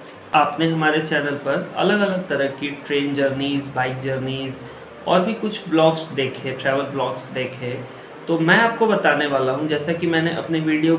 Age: 30-49